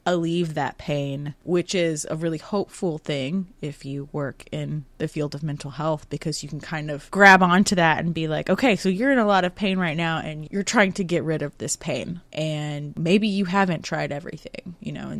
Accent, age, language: American, 20-39, English